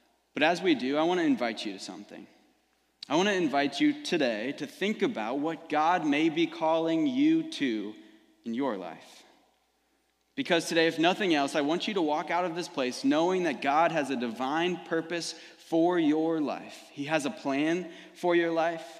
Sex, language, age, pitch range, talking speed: male, English, 20-39, 130-205 Hz, 195 wpm